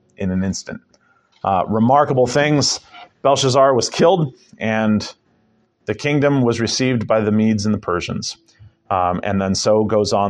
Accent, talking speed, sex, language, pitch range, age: American, 150 wpm, male, English, 115-150 Hz, 40-59